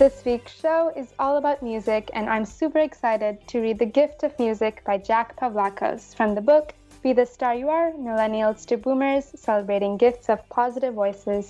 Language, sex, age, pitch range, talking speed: English, female, 20-39, 215-290 Hz, 190 wpm